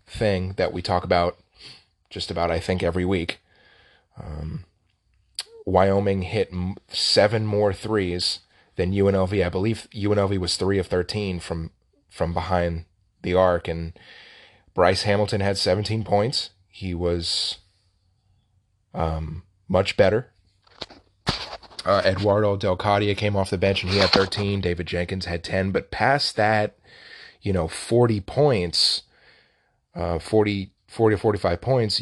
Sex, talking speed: male, 130 wpm